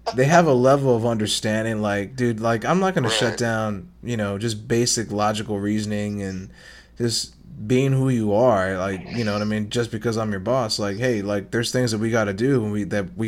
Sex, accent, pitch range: male, American, 105-135 Hz